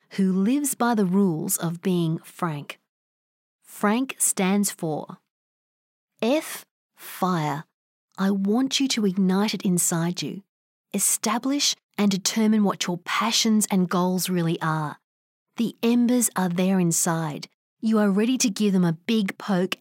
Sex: female